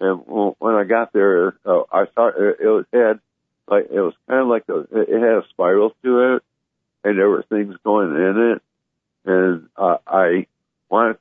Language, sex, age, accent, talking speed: English, male, 60-79, American, 185 wpm